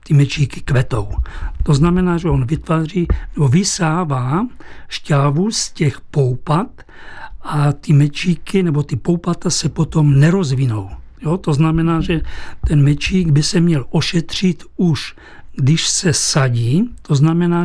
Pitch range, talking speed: 145-170 Hz, 135 wpm